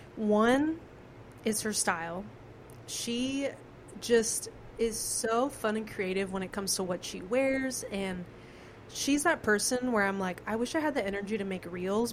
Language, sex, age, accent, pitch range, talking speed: English, female, 20-39, American, 190-225 Hz, 170 wpm